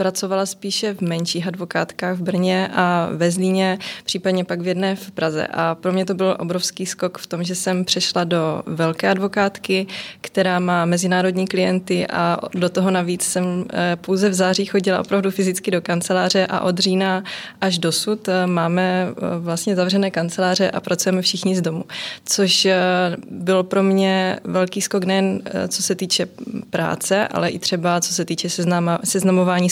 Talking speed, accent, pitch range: 160 wpm, native, 175-190 Hz